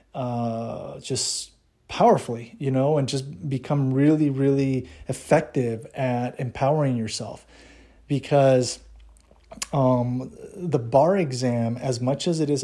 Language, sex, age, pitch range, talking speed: English, male, 30-49, 125-145 Hz, 115 wpm